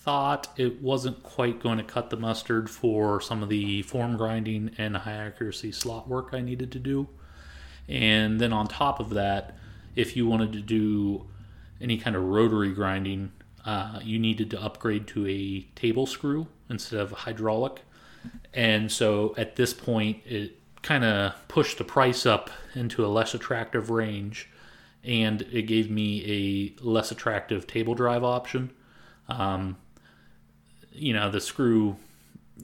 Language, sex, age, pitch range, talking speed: English, male, 30-49, 100-120 Hz, 155 wpm